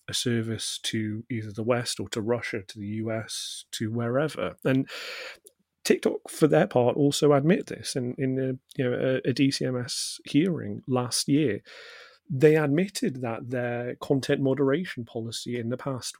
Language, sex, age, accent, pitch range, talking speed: English, male, 30-49, British, 115-140 Hz, 150 wpm